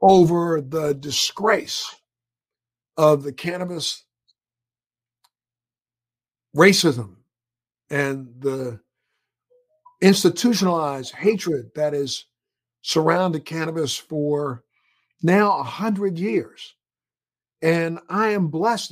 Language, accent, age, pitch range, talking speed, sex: English, American, 50-69, 140-195 Hz, 75 wpm, male